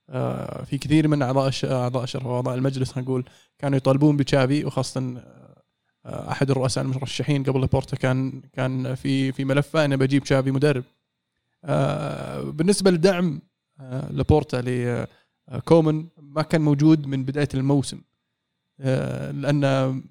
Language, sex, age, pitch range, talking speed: Arabic, male, 20-39, 130-155 Hz, 110 wpm